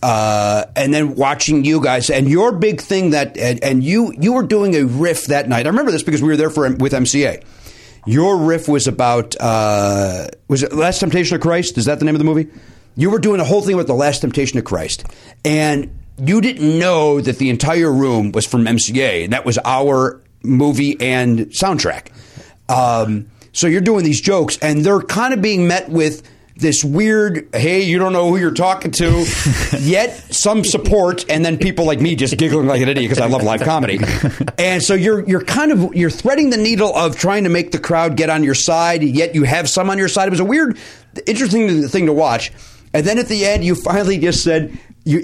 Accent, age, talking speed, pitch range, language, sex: American, 40-59, 220 wpm, 130-185 Hz, English, male